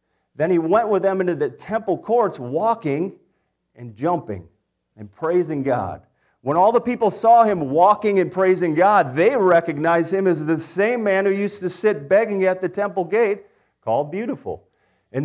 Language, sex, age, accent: English, male, 40-59, American